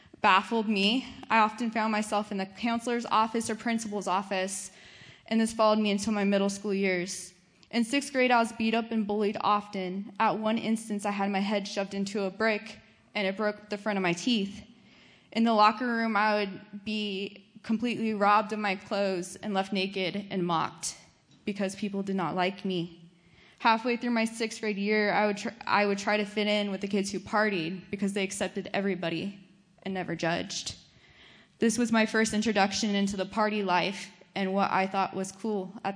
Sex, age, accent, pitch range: female, 20-39, American, 190-220 Hz